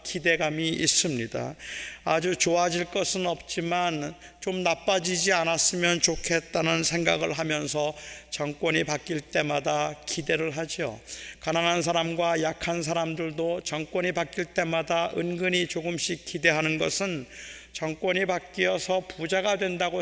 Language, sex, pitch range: Korean, male, 165-185 Hz